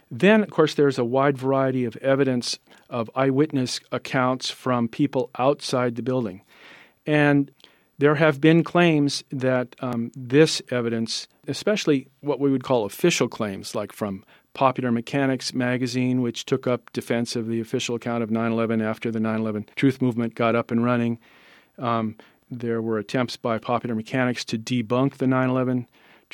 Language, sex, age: English, male, 40-59